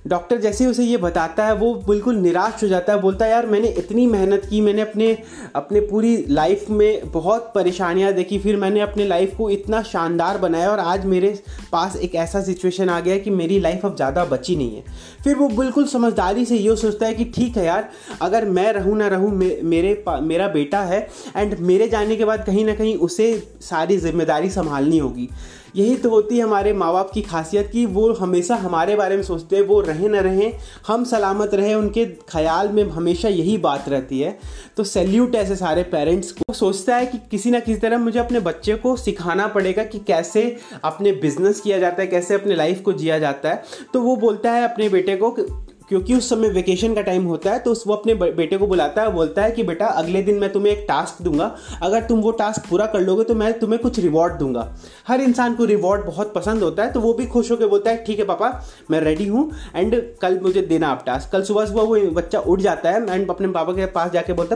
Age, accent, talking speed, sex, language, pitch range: 30-49, native, 225 wpm, male, Hindi, 180-225 Hz